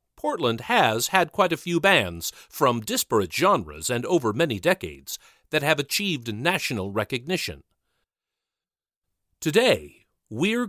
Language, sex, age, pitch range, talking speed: English, male, 40-59, 110-170 Hz, 120 wpm